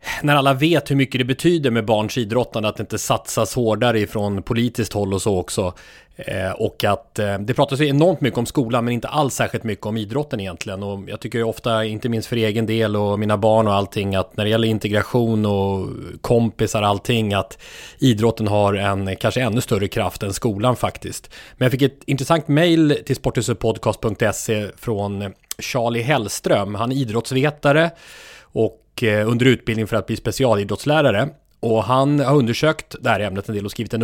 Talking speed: 185 wpm